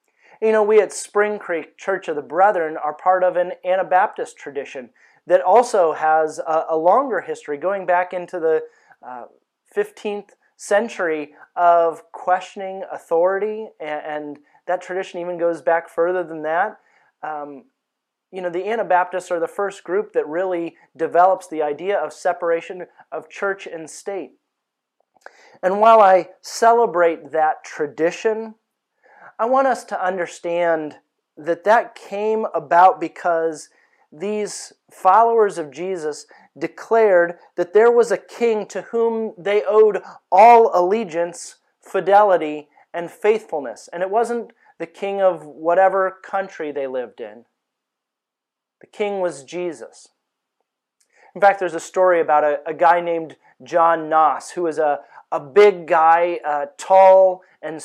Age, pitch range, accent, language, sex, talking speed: 30-49, 165-205 Hz, American, English, male, 135 wpm